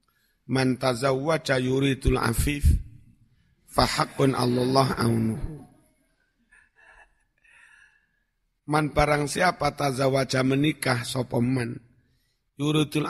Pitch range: 120-140 Hz